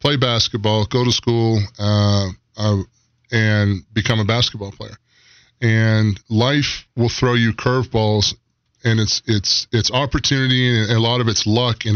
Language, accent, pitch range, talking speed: English, American, 105-120 Hz, 150 wpm